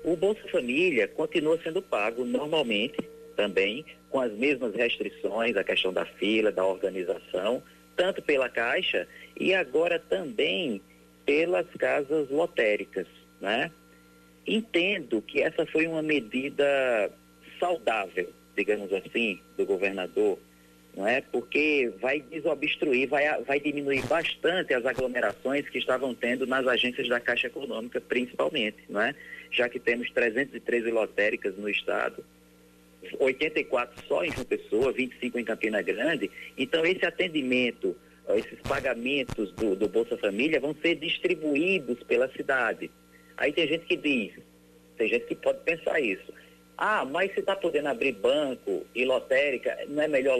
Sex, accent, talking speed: male, Brazilian, 135 wpm